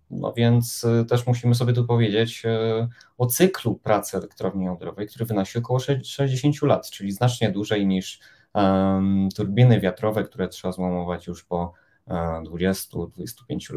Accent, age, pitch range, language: native, 20-39, 95-125 Hz, Polish